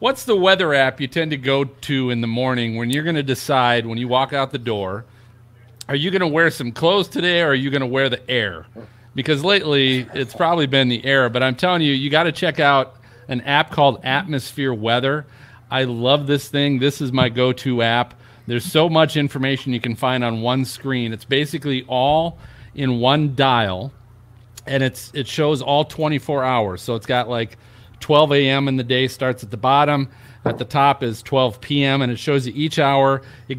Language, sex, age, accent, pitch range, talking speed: English, male, 40-59, American, 125-150 Hz, 210 wpm